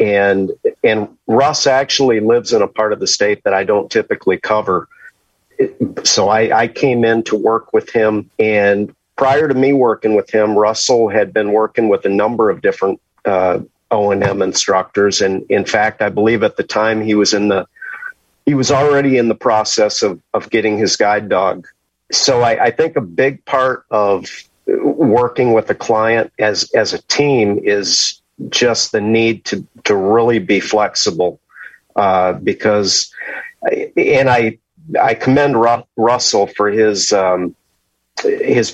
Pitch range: 105-130 Hz